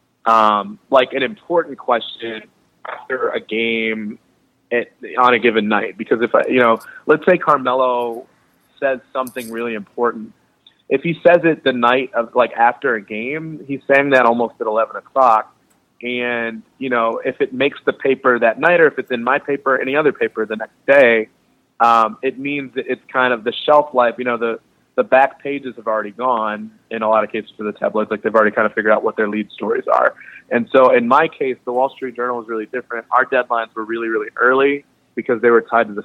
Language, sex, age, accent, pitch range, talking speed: English, male, 30-49, American, 115-130 Hz, 215 wpm